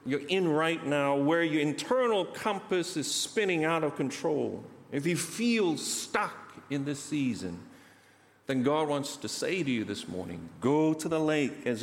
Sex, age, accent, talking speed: male, 50-69, American, 170 wpm